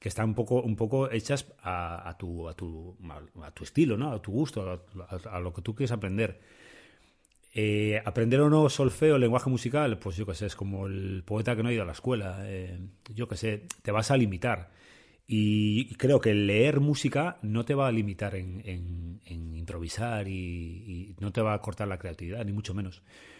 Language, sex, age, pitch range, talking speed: Spanish, male, 30-49, 95-120 Hz, 210 wpm